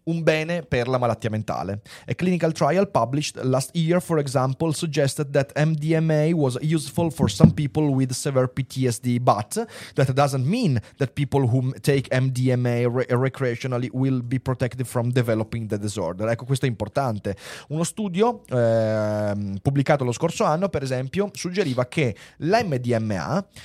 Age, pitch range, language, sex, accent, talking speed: 30-49, 115-155 Hz, Italian, male, native, 150 wpm